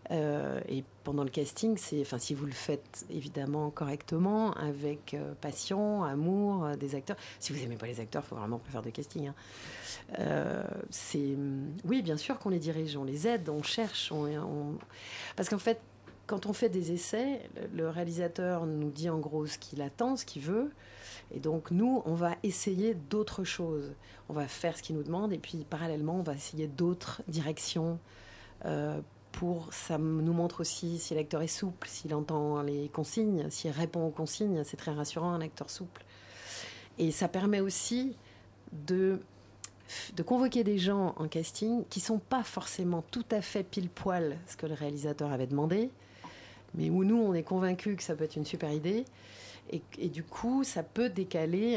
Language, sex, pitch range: French, female, 145-190 Hz